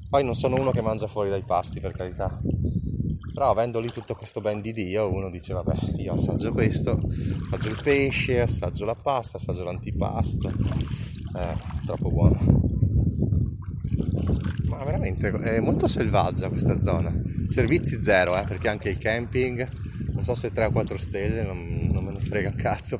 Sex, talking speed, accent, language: male, 165 wpm, native, Italian